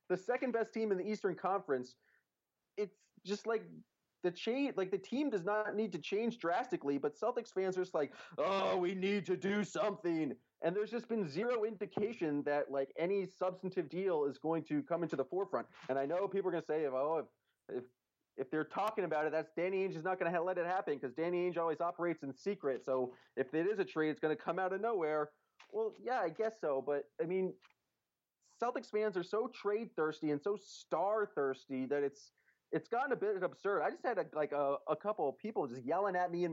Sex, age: male, 30-49